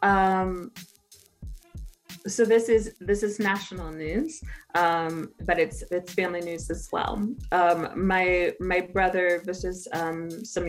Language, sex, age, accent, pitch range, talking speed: English, female, 20-39, American, 160-185 Hz, 135 wpm